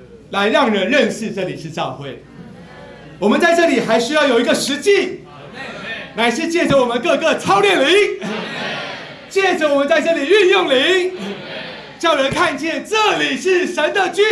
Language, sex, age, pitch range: Chinese, male, 40-59, 260-340 Hz